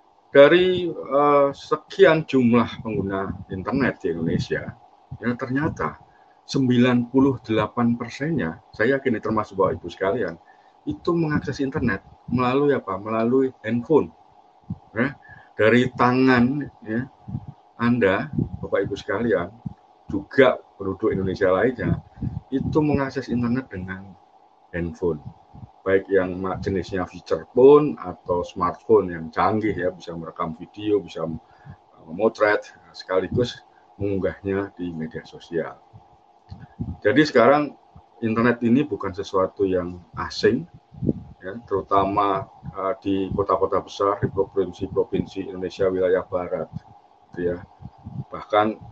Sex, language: male, Indonesian